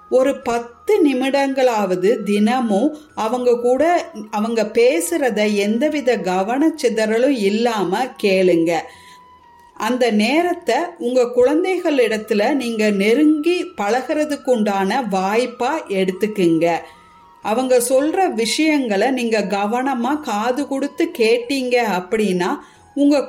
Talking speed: 85 wpm